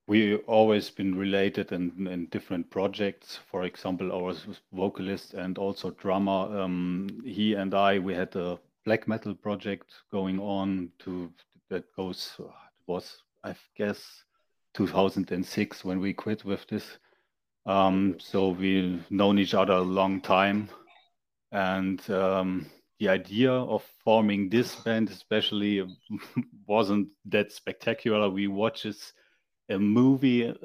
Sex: male